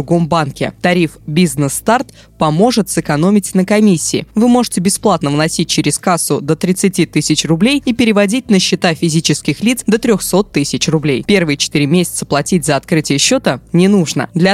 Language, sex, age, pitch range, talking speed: Russian, female, 20-39, 155-200 Hz, 160 wpm